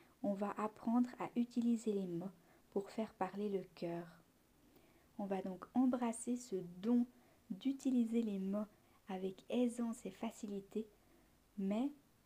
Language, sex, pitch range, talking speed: French, female, 195-235 Hz, 125 wpm